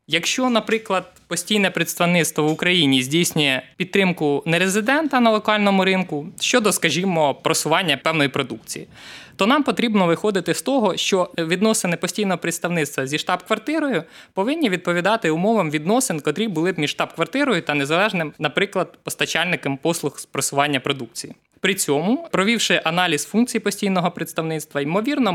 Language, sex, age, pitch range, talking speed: Ukrainian, male, 20-39, 155-205 Hz, 130 wpm